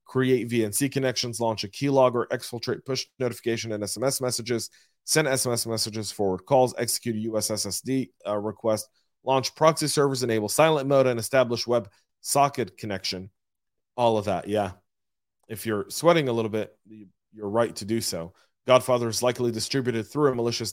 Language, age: English, 30-49